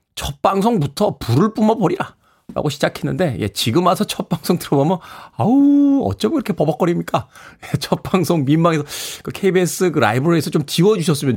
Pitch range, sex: 120-175 Hz, male